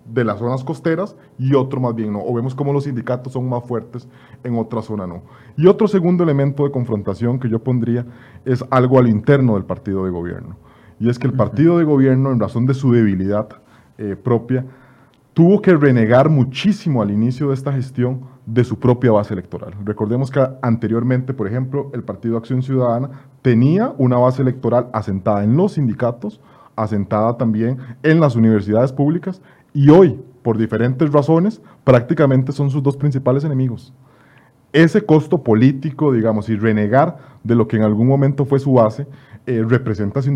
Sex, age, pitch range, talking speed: male, 30-49, 115-140 Hz, 175 wpm